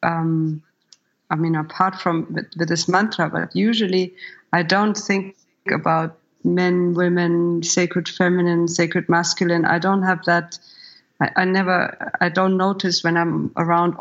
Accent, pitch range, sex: German, 165-185 Hz, female